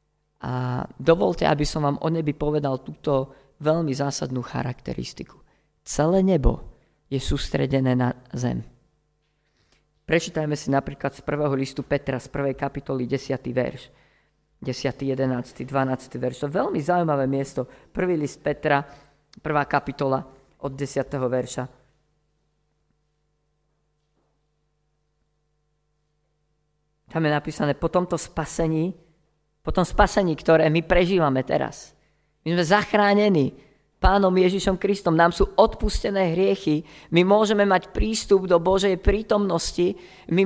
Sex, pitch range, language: female, 140-180 Hz, Slovak